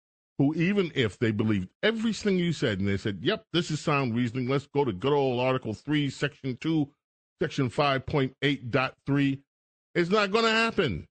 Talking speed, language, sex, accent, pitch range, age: 175 wpm, English, male, American, 120-165 Hz, 40-59